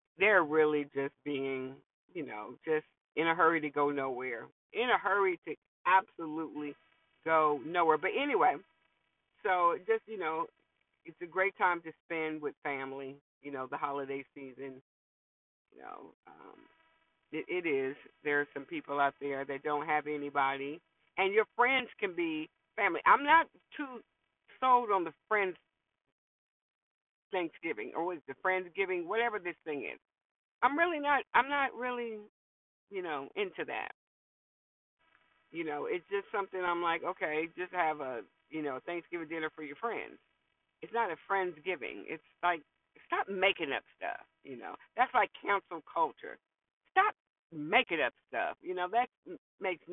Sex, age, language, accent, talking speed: female, 50-69, English, American, 155 wpm